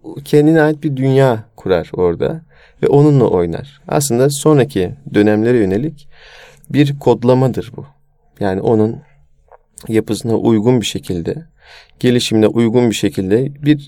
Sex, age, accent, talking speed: male, 40-59, native, 115 wpm